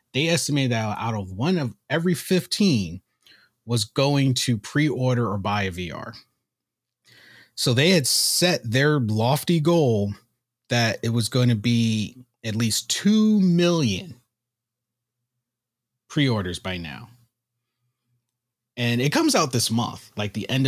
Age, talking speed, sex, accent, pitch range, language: 30-49, 135 wpm, male, American, 115-150 Hz, English